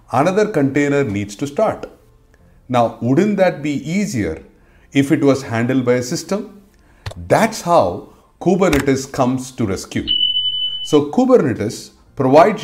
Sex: male